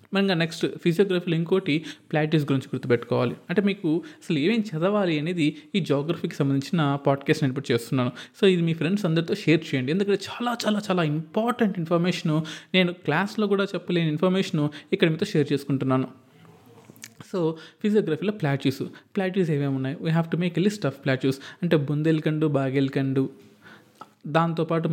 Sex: male